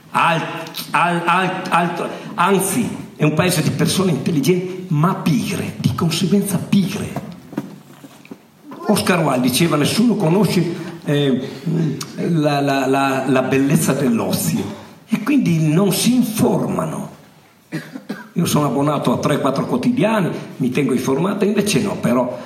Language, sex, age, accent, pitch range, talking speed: Italian, male, 50-69, native, 160-220 Hz, 120 wpm